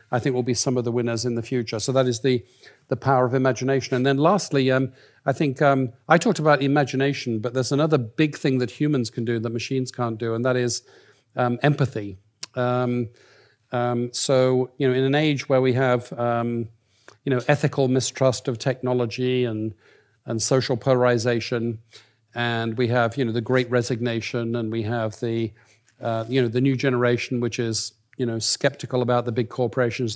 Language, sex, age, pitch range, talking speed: Danish, male, 50-69, 120-135 Hz, 195 wpm